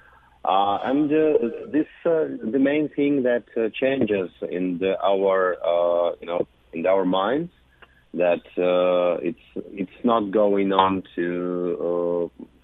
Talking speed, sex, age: 140 wpm, male, 40-59